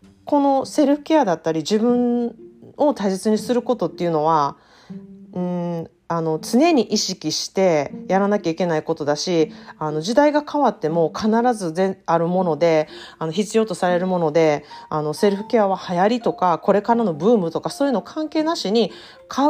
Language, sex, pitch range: Japanese, female, 160-235 Hz